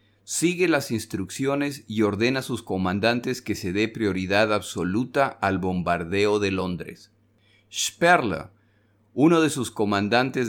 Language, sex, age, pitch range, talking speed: Spanish, male, 40-59, 105-130 Hz, 125 wpm